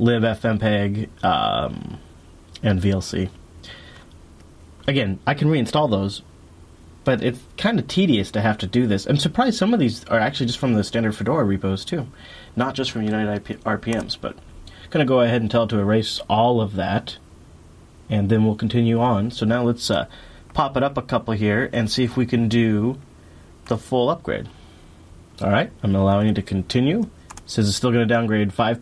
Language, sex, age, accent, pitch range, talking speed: English, male, 30-49, American, 90-125 Hz, 180 wpm